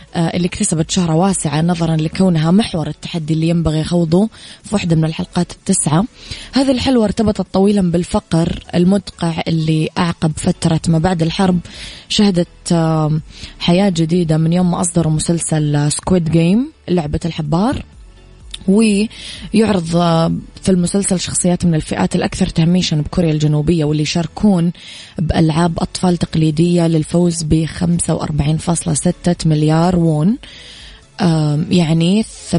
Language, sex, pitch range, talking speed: English, female, 160-180 Hz, 110 wpm